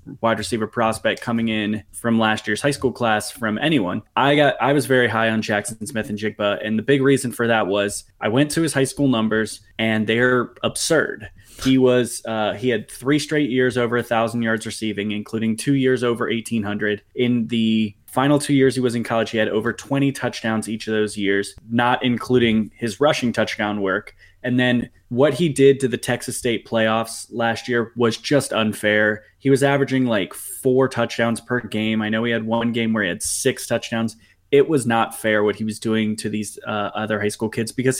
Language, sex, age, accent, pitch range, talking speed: English, male, 20-39, American, 110-125 Hz, 210 wpm